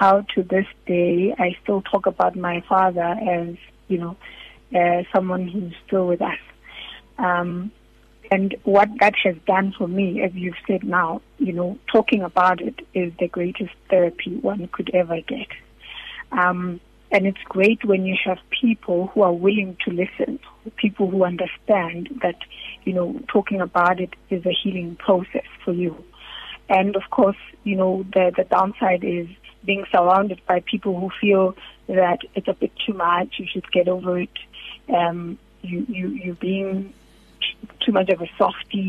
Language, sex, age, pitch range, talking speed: English, female, 30-49, 180-205 Hz, 165 wpm